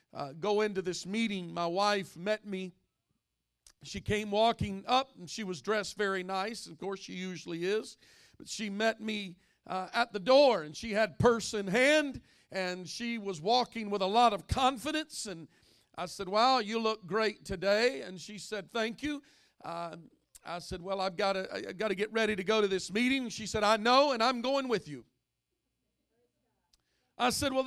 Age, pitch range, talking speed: 50-69, 185-220 Hz, 190 wpm